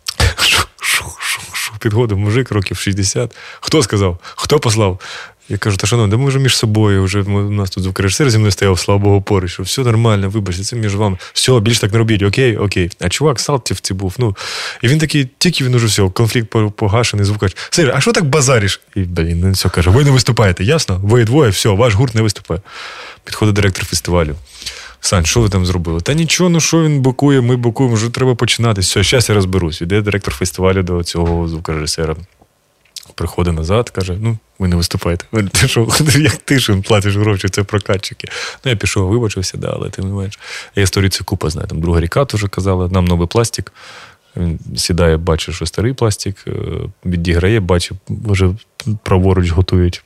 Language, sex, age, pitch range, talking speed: Ukrainian, male, 20-39, 95-120 Hz, 190 wpm